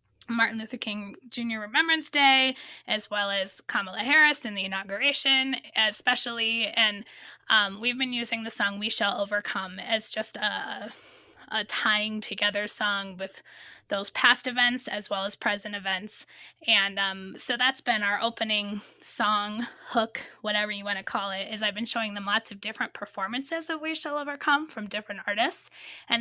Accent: American